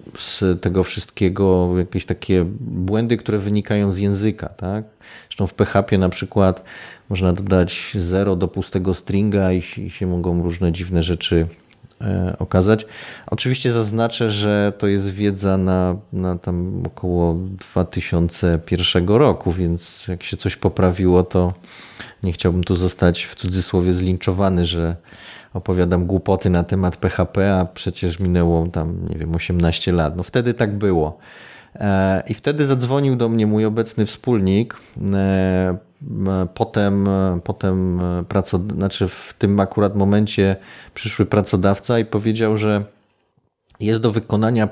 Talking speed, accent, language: 125 wpm, native, Polish